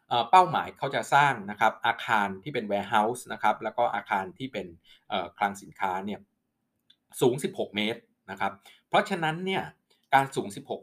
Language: Thai